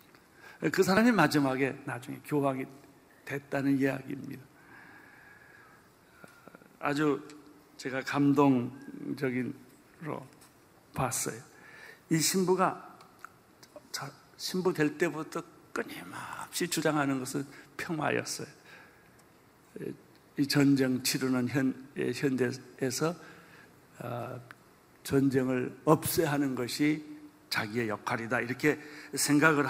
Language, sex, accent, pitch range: Korean, male, native, 125-155 Hz